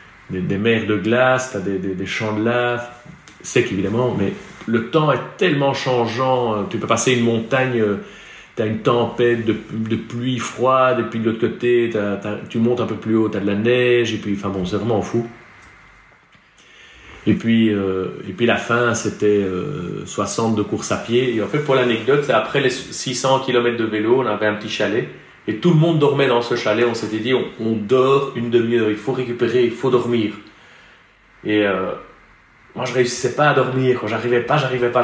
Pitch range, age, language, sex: 110-130 Hz, 40-59, French, male